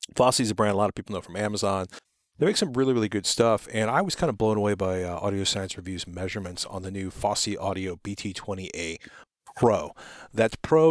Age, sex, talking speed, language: 40-59, male, 220 wpm, English